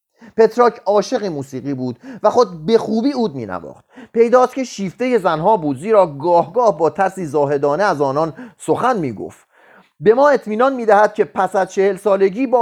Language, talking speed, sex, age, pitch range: Persian, 175 wpm, male, 30-49, 160-240 Hz